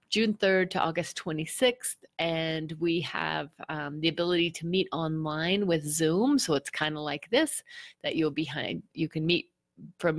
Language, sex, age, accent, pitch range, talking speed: English, female, 30-49, American, 160-210 Hz, 175 wpm